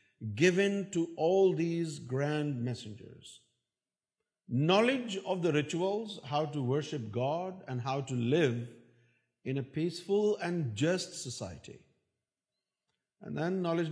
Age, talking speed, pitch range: 50-69, 115 wpm, 125-185 Hz